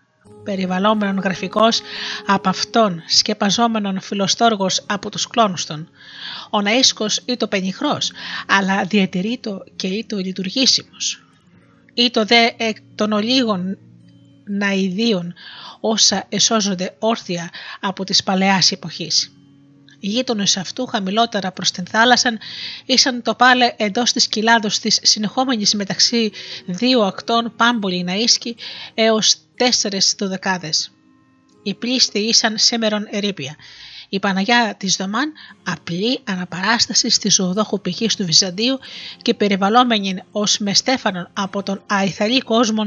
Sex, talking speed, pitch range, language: female, 110 wpm, 190-230 Hz, Greek